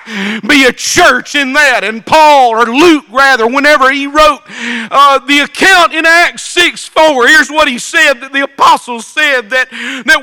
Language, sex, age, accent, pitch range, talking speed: English, male, 50-69, American, 250-320 Hz, 175 wpm